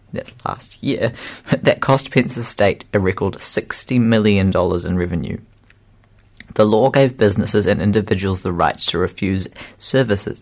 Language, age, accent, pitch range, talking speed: English, 30-49, Australian, 100-115 Hz, 145 wpm